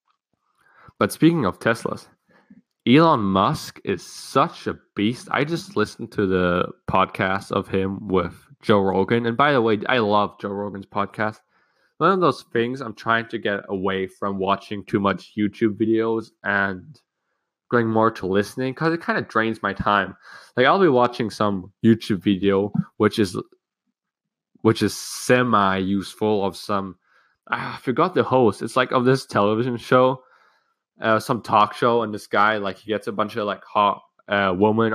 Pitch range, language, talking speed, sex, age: 100-125 Hz, English, 170 wpm, male, 10-29